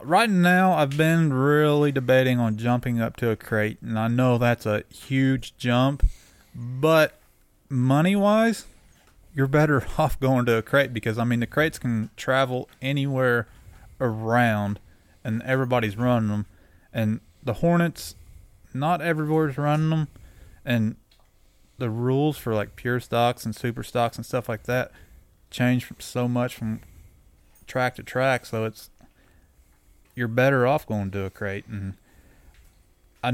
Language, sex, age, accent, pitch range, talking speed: English, male, 20-39, American, 105-130 Hz, 145 wpm